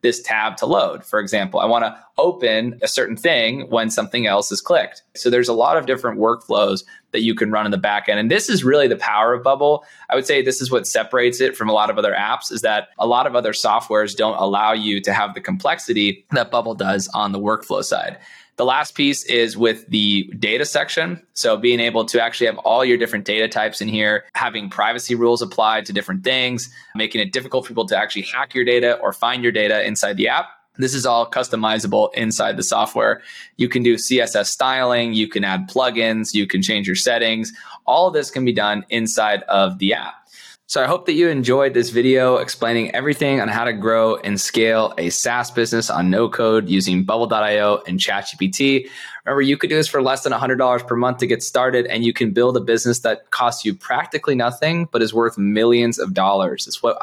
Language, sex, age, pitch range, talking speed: English, male, 20-39, 105-125 Hz, 220 wpm